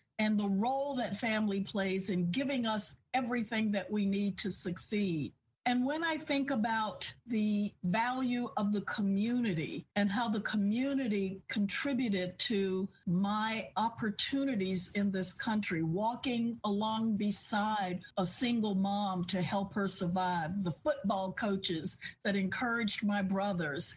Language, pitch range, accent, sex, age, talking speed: English, 180-225 Hz, American, female, 50-69, 135 wpm